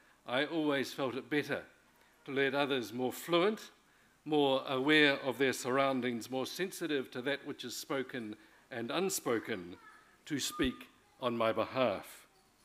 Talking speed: 140 wpm